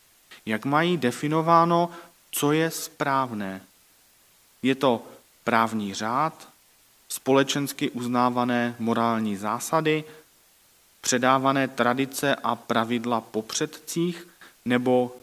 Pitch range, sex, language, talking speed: 120-175 Hz, male, Czech, 80 wpm